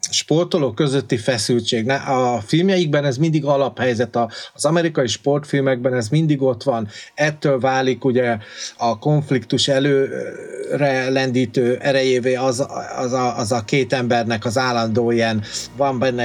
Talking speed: 135 wpm